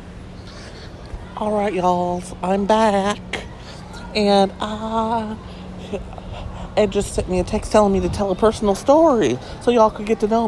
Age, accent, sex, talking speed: 40-59, American, male, 150 wpm